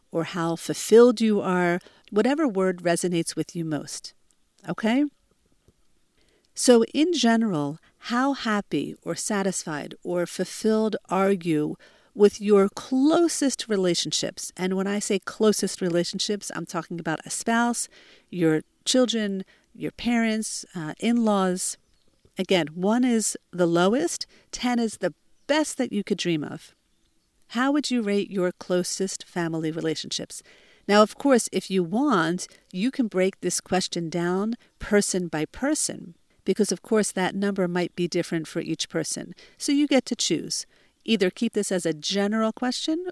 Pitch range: 170-225 Hz